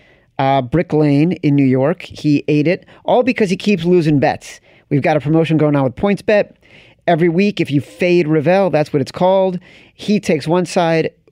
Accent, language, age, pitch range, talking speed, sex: American, English, 40-59, 130-165 Hz, 195 wpm, male